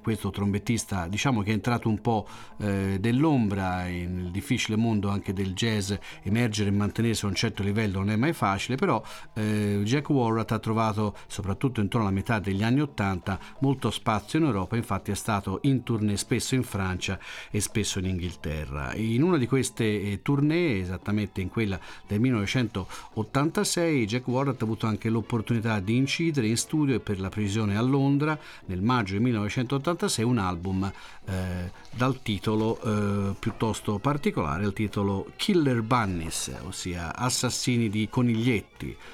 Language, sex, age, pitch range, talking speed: Italian, male, 40-59, 100-125 Hz, 155 wpm